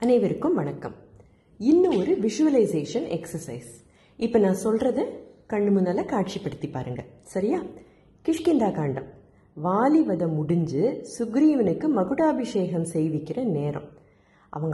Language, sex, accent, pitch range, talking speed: Tamil, female, native, 160-255 Hz, 95 wpm